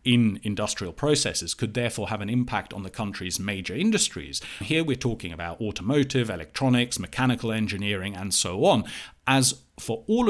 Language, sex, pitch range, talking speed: English, male, 90-125 Hz, 155 wpm